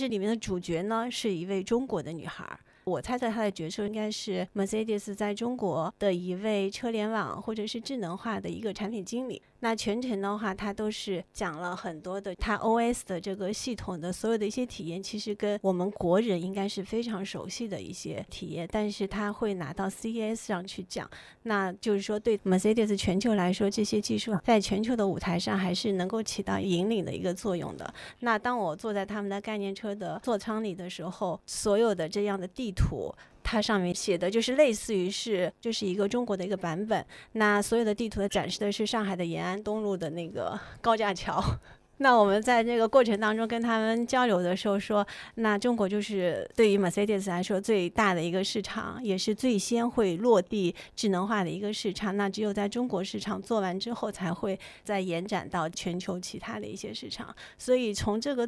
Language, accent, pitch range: Chinese, native, 190-220 Hz